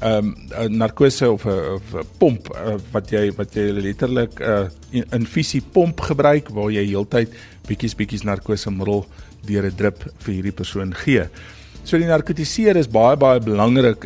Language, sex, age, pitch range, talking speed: English, male, 50-69, 100-125 Hz, 165 wpm